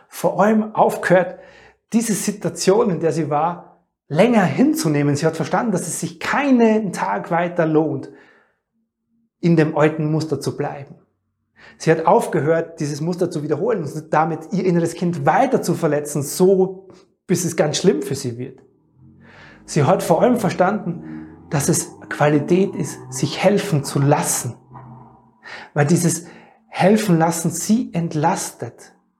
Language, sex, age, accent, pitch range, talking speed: German, male, 30-49, German, 155-195 Hz, 140 wpm